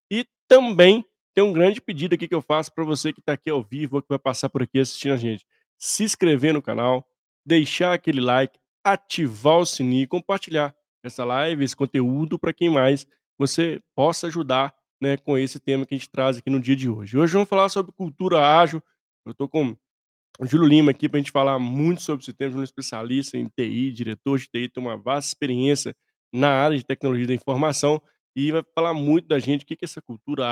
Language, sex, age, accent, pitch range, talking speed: Portuguese, male, 20-39, Brazilian, 130-155 Hz, 220 wpm